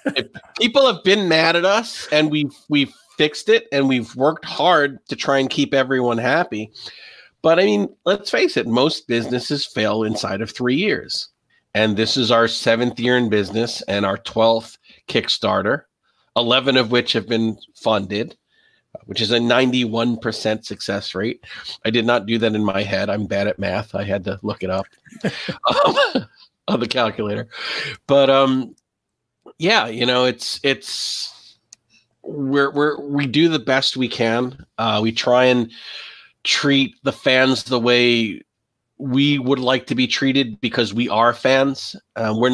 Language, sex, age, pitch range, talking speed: English, male, 40-59, 110-135 Hz, 165 wpm